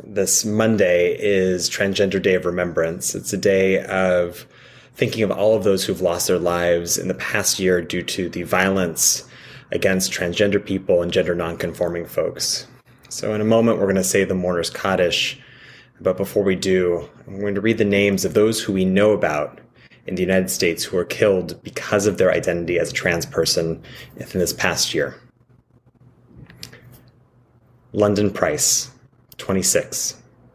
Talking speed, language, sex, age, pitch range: 165 wpm, English, male, 30-49, 90-125 Hz